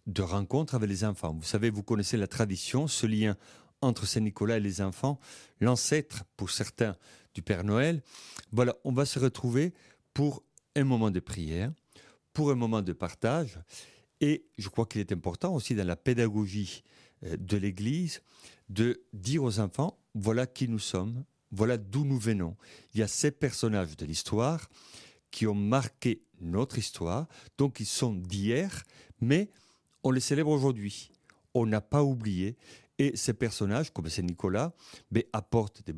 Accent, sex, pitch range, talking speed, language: French, male, 100-130 Hz, 160 wpm, French